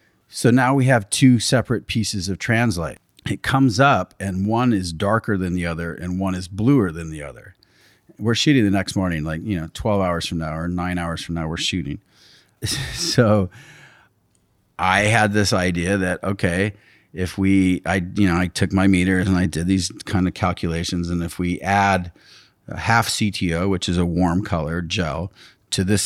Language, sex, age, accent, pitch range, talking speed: English, male, 40-59, American, 85-105 Hz, 190 wpm